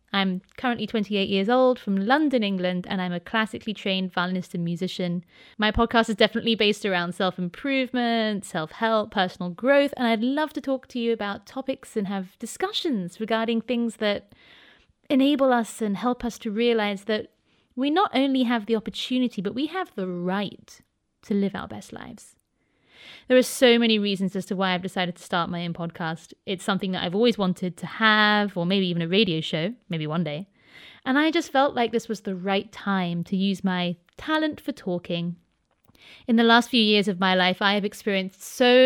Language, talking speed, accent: English, 195 wpm, British